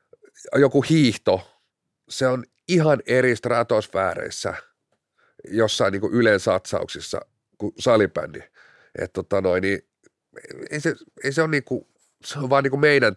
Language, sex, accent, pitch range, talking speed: Finnish, male, native, 115-170 Hz, 80 wpm